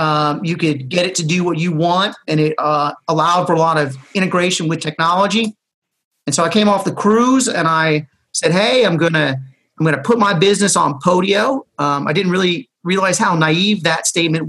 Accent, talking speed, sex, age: American, 215 wpm, male, 30-49